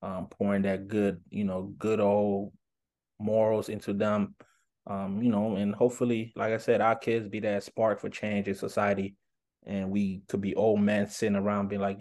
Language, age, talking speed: English, 20-39, 190 wpm